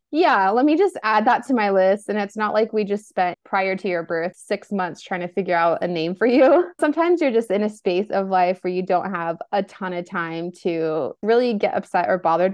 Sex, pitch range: female, 185-250 Hz